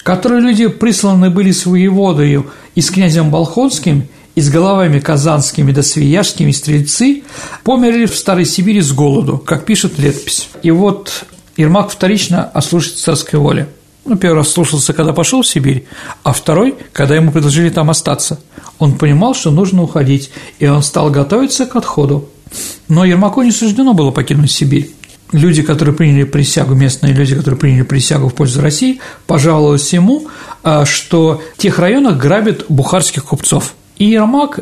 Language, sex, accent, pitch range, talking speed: Russian, male, native, 145-190 Hz, 155 wpm